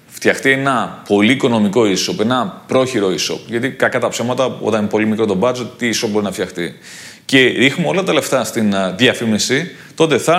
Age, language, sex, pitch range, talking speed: 30-49, Greek, male, 105-140 Hz, 185 wpm